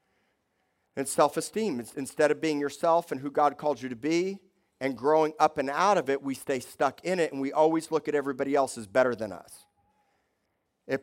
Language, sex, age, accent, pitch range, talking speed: English, male, 50-69, American, 110-150 Hz, 205 wpm